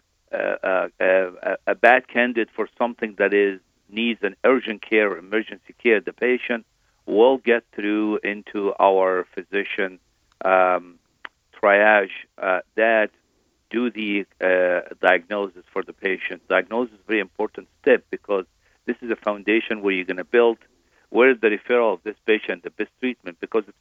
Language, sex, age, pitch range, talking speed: English, male, 50-69, 100-120 Hz, 160 wpm